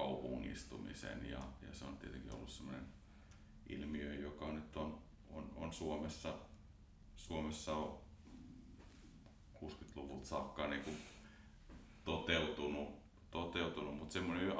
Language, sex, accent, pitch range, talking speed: Finnish, male, native, 70-85 Hz, 105 wpm